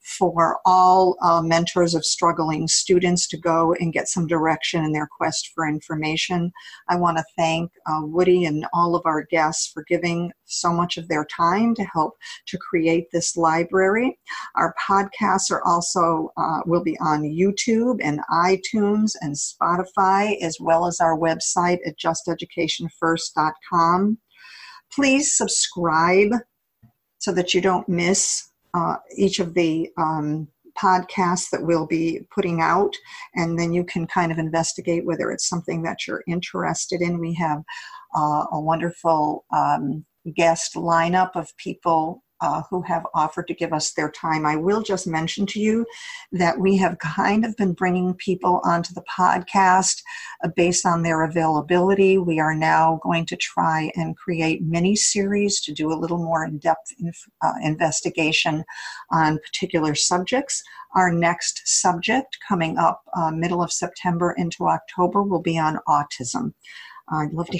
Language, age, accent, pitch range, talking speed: English, 50-69, American, 165-190 Hz, 155 wpm